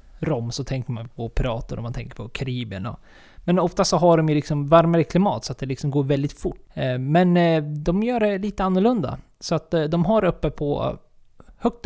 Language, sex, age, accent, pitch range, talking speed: Swedish, male, 20-39, native, 135-170 Hz, 200 wpm